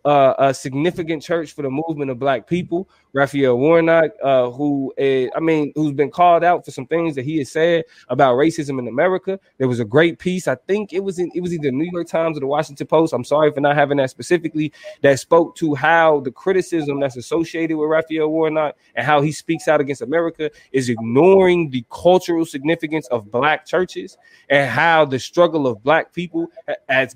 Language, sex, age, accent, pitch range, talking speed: English, male, 20-39, American, 135-165 Hz, 205 wpm